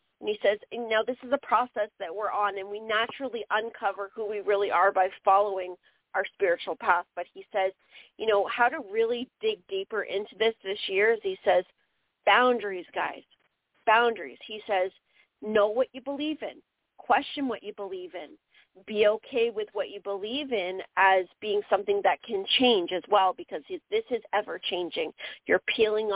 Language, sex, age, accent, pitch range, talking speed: English, female, 40-59, American, 195-255 Hz, 175 wpm